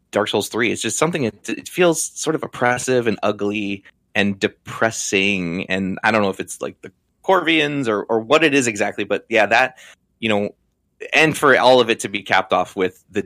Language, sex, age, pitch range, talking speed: English, male, 20-39, 95-115 Hz, 215 wpm